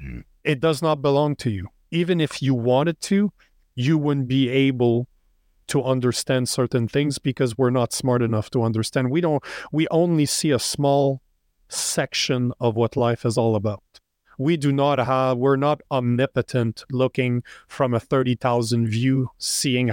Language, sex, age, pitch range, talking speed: English, male, 40-59, 120-140 Hz, 165 wpm